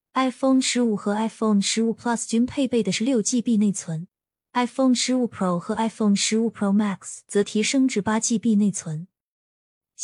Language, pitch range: Chinese, 195-240 Hz